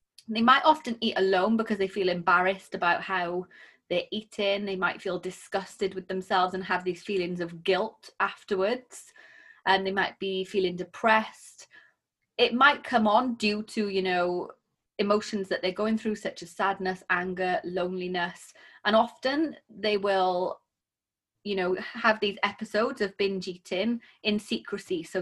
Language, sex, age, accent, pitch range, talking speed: English, female, 30-49, British, 185-220 Hz, 155 wpm